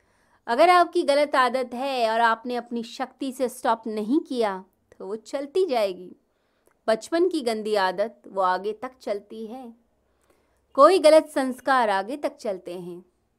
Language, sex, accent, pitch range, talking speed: Hindi, female, native, 200-275 Hz, 150 wpm